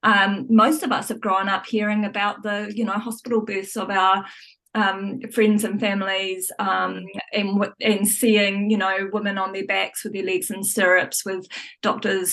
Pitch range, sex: 195-235 Hz, female